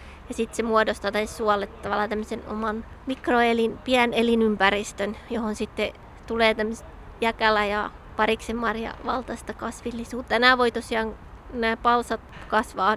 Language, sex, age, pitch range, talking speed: Finnish, female, 20-39, 220-240 Hz, 125 wpm